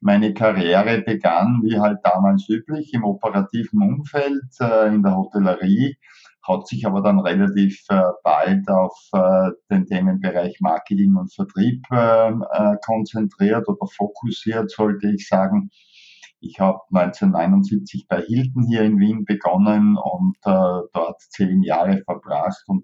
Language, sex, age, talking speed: German, male, 50-69, 120 wpm